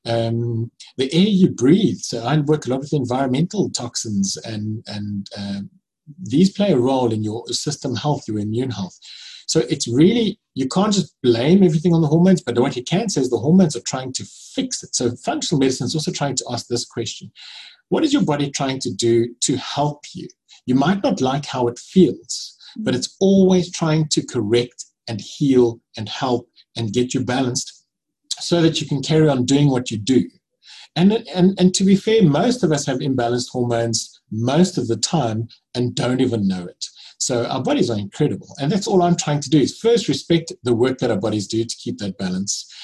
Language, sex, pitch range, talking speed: English, male, 115-165 Hz, 210 wpm